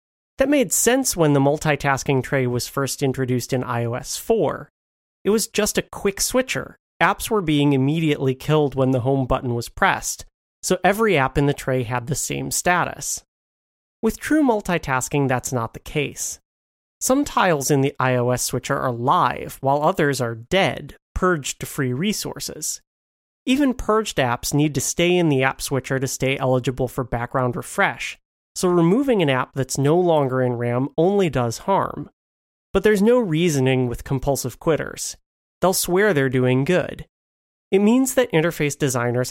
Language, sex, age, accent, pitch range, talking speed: English, male, 30-49, American, 125-170 Hz, 165 wpm